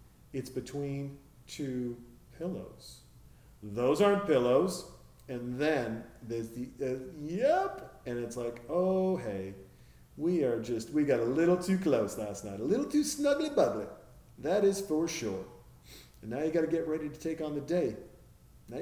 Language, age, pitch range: English, 40-59, 110-145 Hz